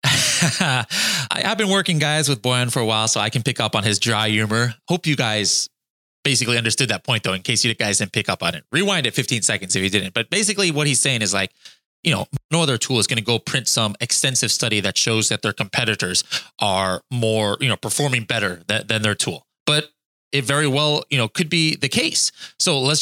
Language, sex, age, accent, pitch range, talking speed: English, male, 20-39, American, 110-150 Hz, 230 wpm